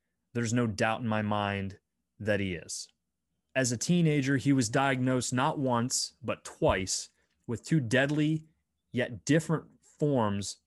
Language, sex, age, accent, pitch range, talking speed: English, male, 30-49, American, 105-140 Hz, 140 wpm